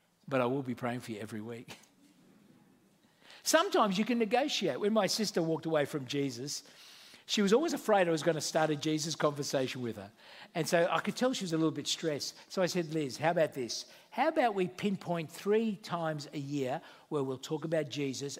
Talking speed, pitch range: 210 wpm, 130-185 Hz